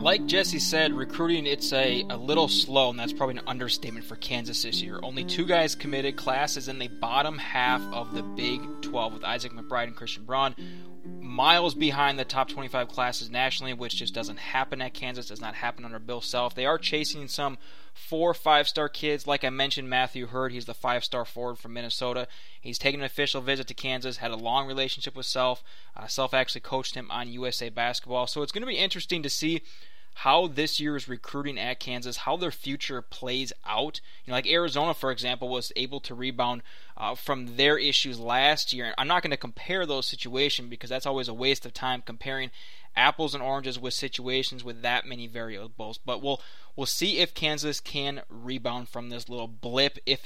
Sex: male